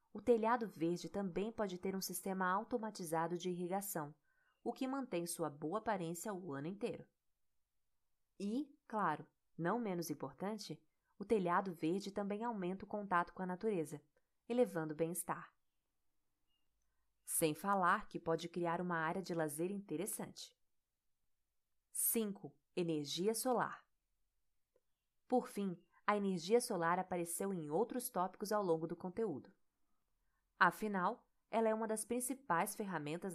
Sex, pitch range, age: female, 165-220 Hz, 20-39